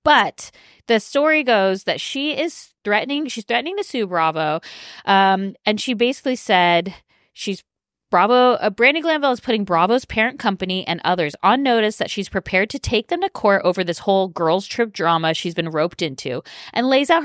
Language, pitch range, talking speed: English, 170-235 Hz, 185 wpm